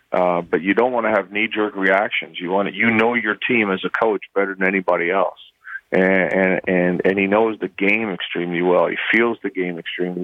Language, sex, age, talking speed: English, male, 40-59, 210 wpm